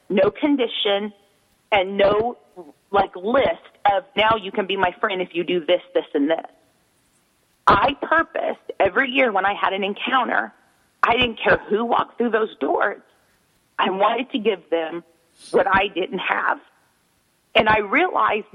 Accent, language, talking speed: American, English, 160 wpm